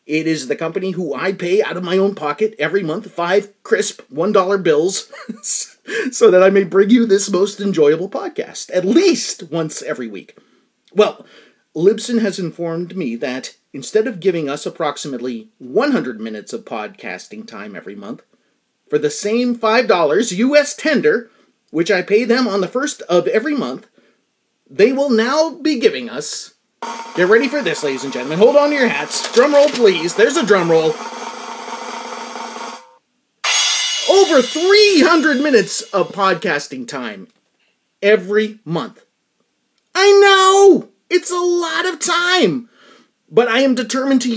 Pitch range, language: 180-265 Hz, English